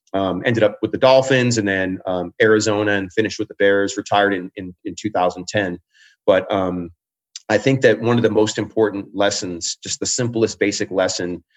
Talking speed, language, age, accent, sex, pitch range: 185 wpm, English, 30-49, American, male, 95-135 Hz